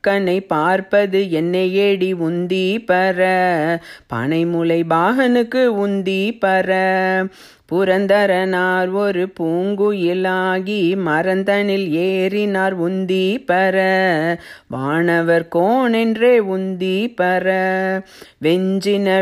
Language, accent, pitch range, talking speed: Tamil, native, 180-195 Hz, 75 wpm